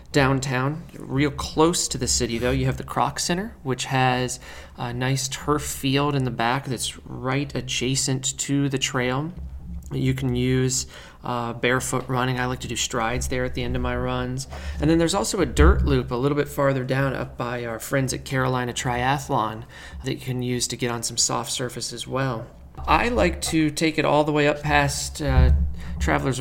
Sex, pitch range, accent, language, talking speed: male, 120-140 Hz, American, English, 200 wpm